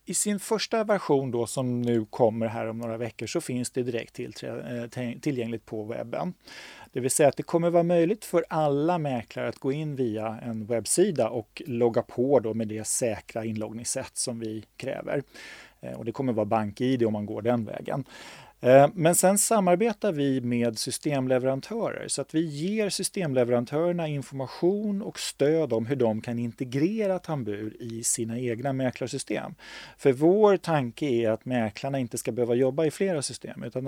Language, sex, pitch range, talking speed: Swedish, male, 115-155 Hz, 170 wpm